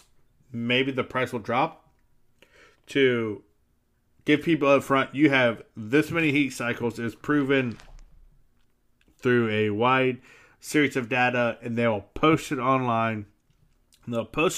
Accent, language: American, English